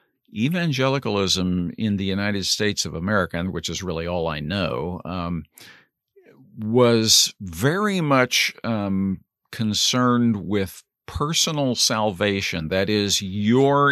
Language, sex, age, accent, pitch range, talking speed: English, male, 50-69, American, 95-115 Hz, 110 wpm